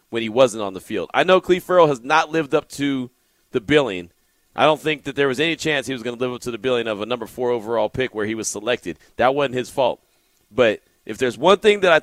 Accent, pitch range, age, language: American, 125-160 Hz, 30-49, English